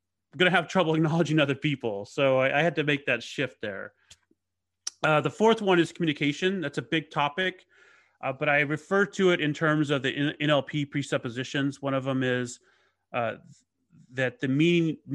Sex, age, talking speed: male, 30-49, 180 wpm